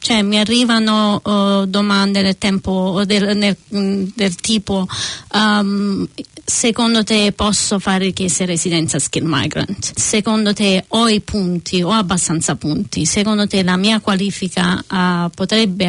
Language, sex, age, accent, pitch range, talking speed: Italian, female, 30-49, native, 185-220 Hz, 130 wpm